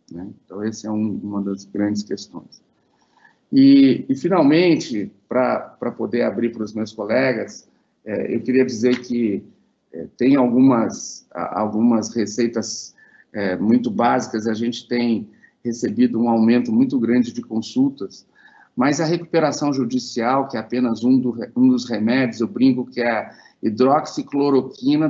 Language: Portuguese